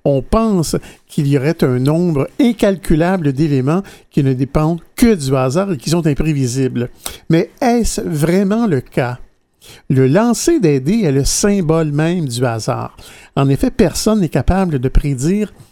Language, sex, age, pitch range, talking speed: French, male, 50-69, 130-195 Hz, 155 wpm